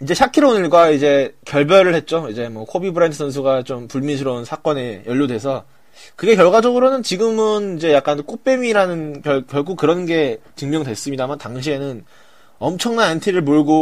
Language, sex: Korean, male